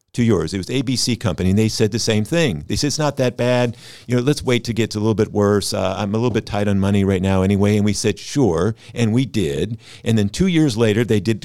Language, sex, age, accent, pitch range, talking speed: English, male, 50-69, American, 95-115 Hz, 285 wpm